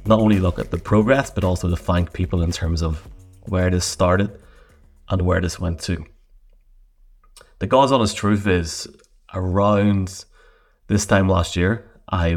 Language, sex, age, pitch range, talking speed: English, male, 30-49, 85-95 Hz, 160 wpm